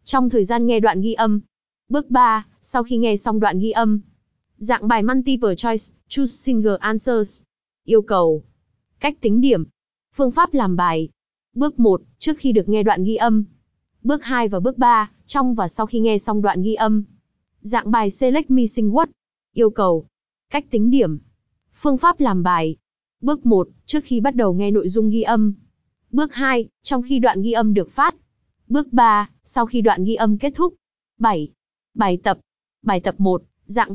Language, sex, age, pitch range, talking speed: Vietnamese, female, 20-39, 205-250 Hz, 185 wpm